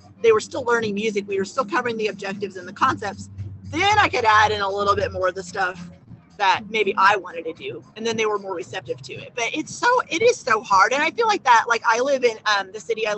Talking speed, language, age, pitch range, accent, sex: 275 wpm, English, 30-49, 195-270 Hz, American, female